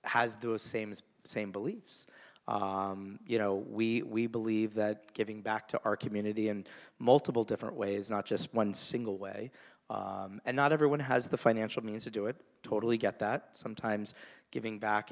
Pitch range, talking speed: 100-110 Hz, 170 wpm